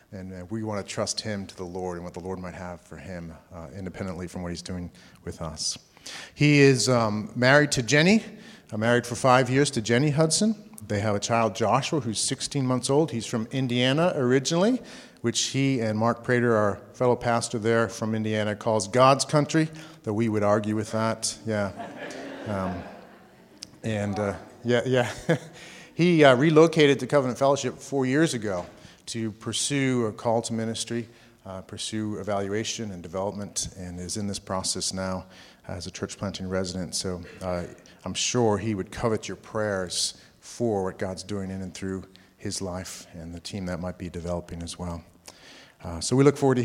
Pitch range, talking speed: 95-125 Hz, 185 wpm